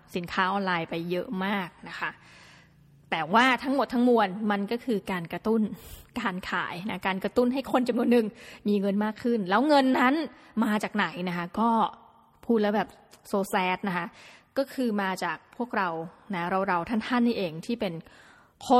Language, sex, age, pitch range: Thai, female, 20-39, 185-245 Hz